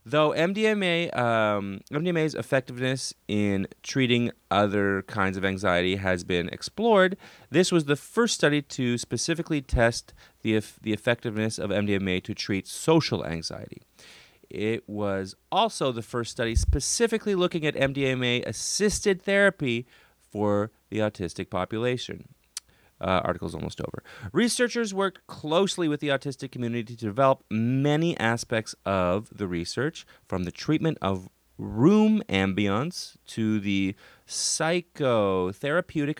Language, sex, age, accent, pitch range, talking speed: English, male, 30-49, American, 100-150 Hz, 120 wpm